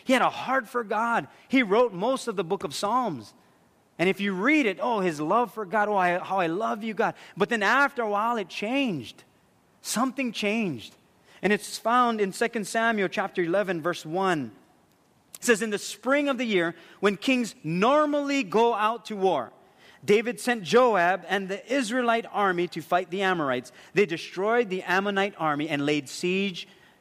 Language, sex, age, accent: English, male, 30-49, American